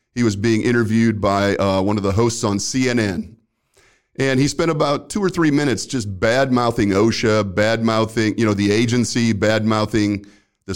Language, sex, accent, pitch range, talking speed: English, male, American, 105-125 Hz, 185 wpm